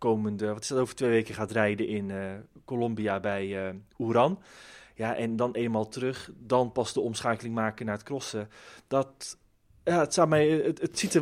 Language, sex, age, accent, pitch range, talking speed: Dutch, male, 20-39, Dutch, 115-160 Hz, 200 wpm